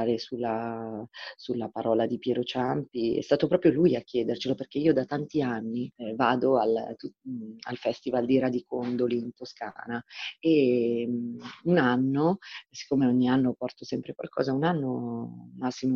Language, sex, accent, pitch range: Italian, female, native, 120-160 Hz